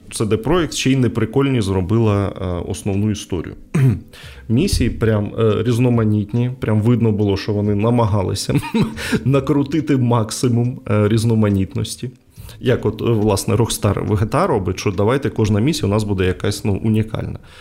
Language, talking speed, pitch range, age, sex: Ukrainian, 135 wpm, 100-120 Hz, 20-39, male